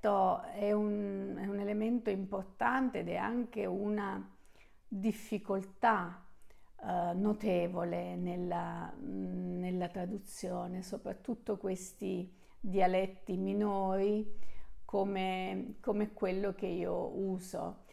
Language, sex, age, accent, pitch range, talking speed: French, female, 50-69, Italian, 185-230 Hz, 80 wpm